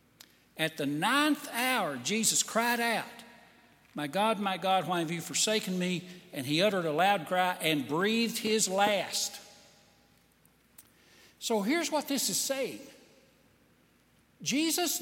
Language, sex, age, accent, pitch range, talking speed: English, male, 60-79, American, 185-270 Hz, 130 wpm